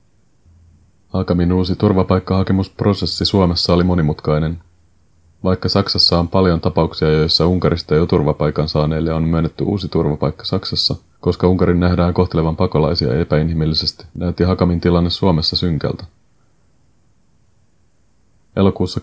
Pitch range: 80-90 Hz